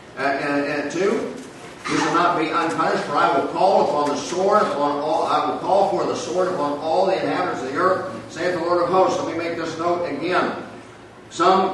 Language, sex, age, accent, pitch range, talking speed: English, male, 50-69, American, 145-180 Hz, 220 wpm